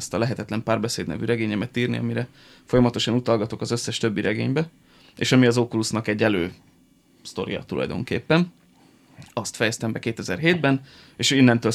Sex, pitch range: male, 110-125 Hz